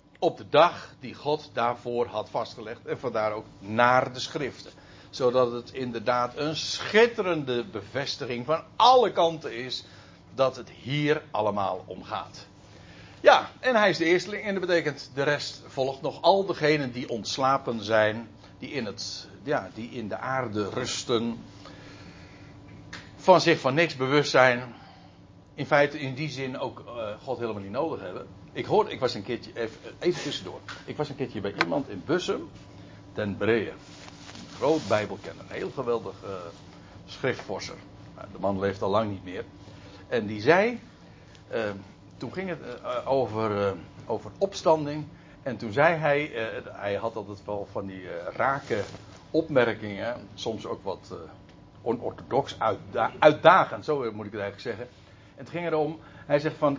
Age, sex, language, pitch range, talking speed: 60-79, male, Dutch, 105-150 Hz, 165 wpm